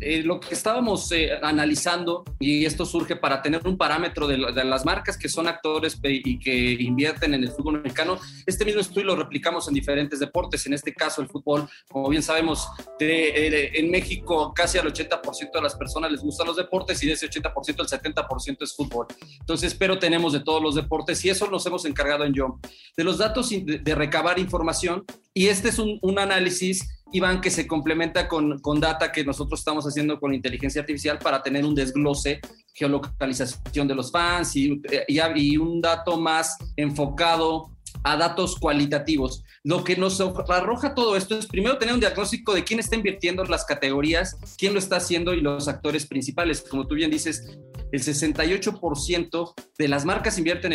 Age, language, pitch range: 40-59, English, 145-180 Hz